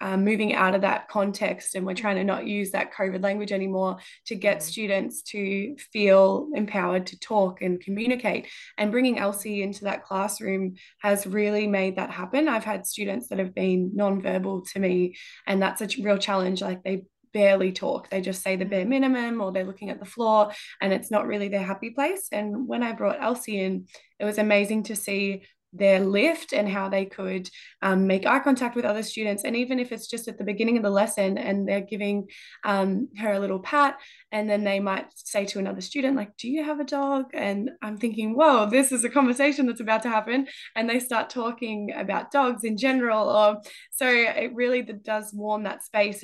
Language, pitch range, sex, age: English, 195-230 Hz, female, 20-39